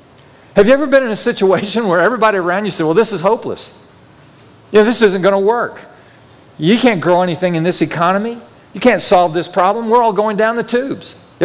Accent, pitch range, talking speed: American, 160-225 Hz, 220 wpm